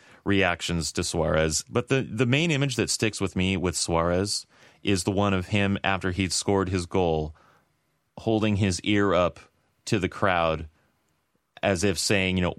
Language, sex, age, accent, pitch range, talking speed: English, male, 30-49, American, 90-115 Hz, 170 wpm